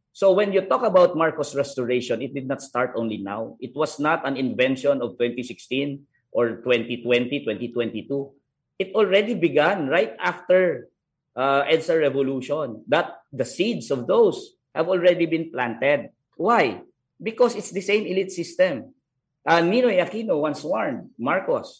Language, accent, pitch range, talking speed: English, Filipino, 130-175 Hz, 145 wpm